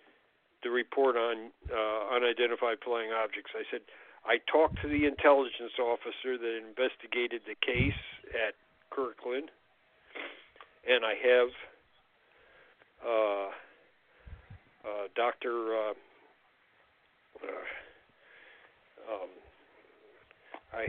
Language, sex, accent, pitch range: English, male, American, 115-155 Hz